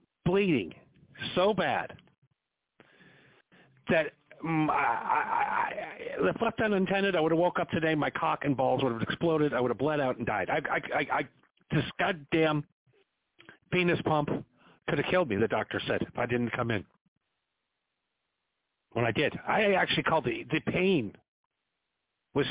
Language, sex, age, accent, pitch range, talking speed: English, male, 50-69, American, 130-175 Hz, 165 wpm